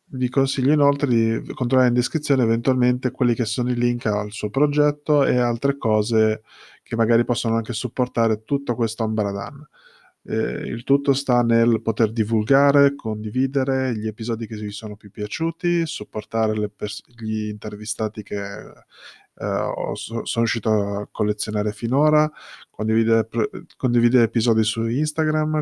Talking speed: 145 wpm